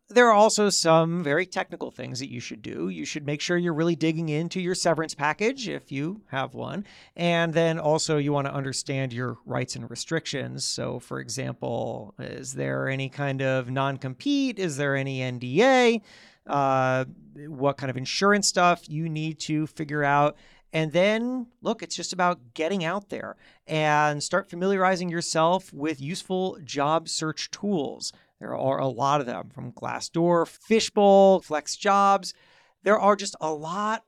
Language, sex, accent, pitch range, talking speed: English, male, American, 140-195 Hz, 165 wpm